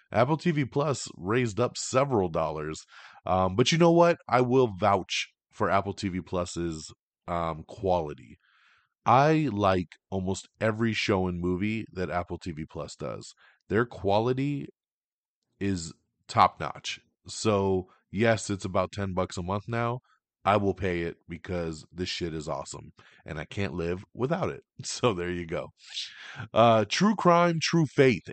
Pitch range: 90-130 Hz